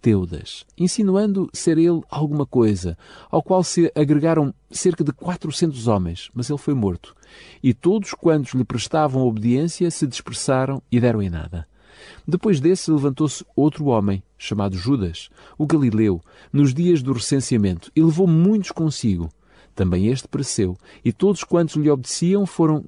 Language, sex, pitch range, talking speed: Portuguese, male, 100-155 Hz, 145 wpm